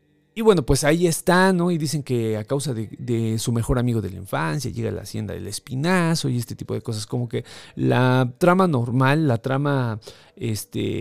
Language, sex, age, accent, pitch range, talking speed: Spanish, male, 40-59, Mexican, 110-150 Hz, 205 wpm